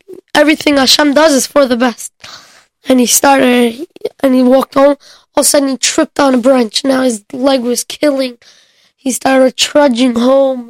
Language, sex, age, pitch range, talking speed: English, female, 10-29, 270-315 Hz, 180 wpm